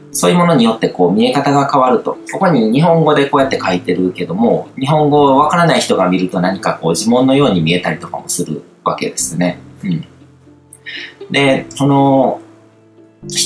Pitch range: 105-165 Hz